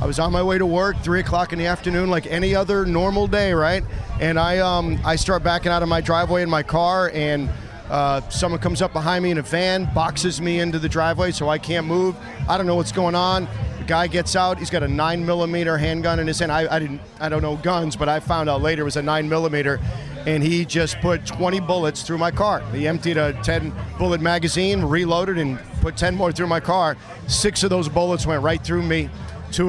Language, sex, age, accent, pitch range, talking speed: English, male, 40-59, American, 150-175 Hz, 240 wpm